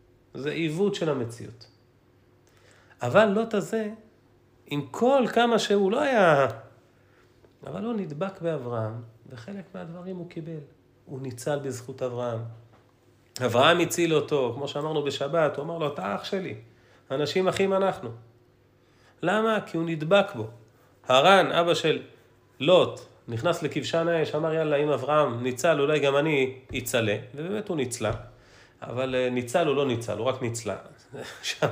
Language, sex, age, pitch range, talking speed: Hebrew, male, 40-59, 120-180 Hz, 135 wpm